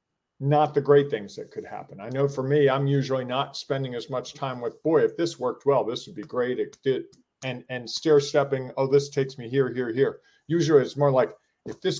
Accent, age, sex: American, 40-59, male